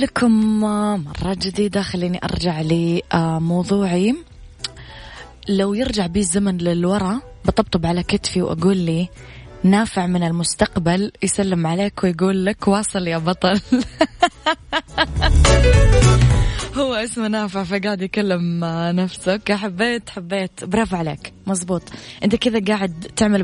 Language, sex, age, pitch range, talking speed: Arabic, female, 20-39, 170-200 Hz, 105 wpm